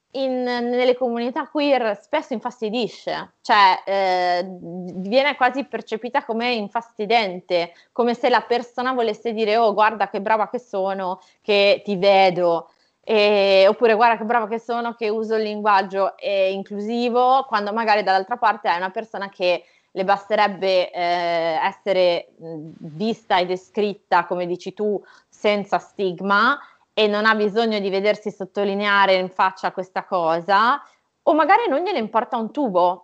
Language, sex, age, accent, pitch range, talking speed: Italian, female, 20-39, native, 190-230 Hz, 145 wpm